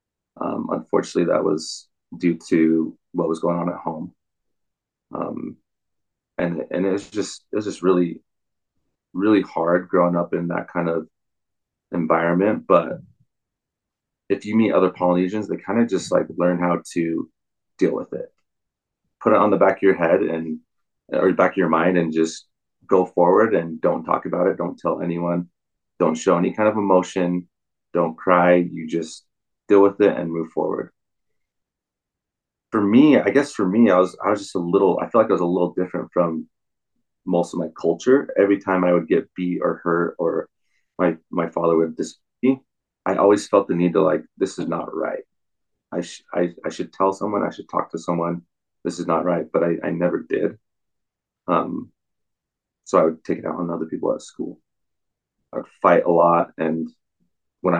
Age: 30-49